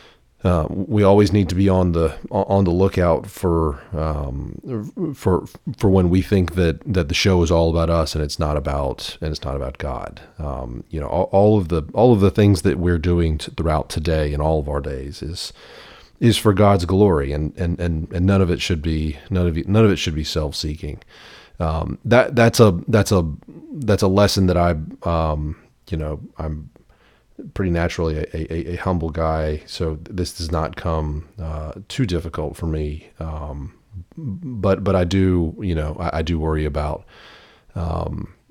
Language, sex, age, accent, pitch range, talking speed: English, male, 40-59, American, 80-95 Hz, 195 wpm